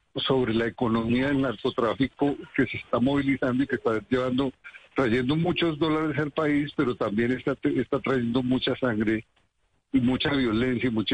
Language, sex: Spanish, male